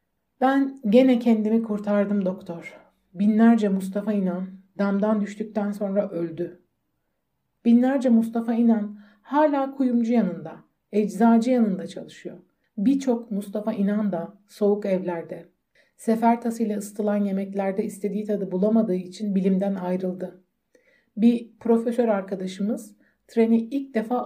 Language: Turkish